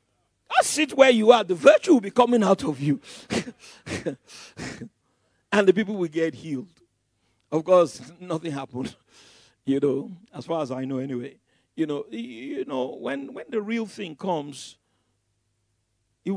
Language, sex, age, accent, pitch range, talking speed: English, male, 50-69, Nigerian, 135-210 Hz, 155 wpm